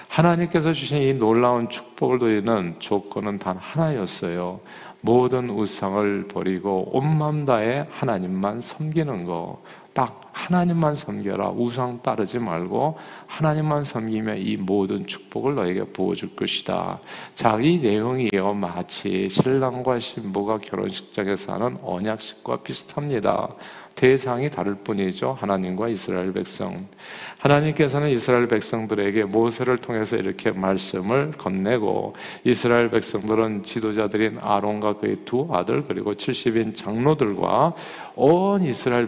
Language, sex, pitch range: Korean, male, 100-130 Hz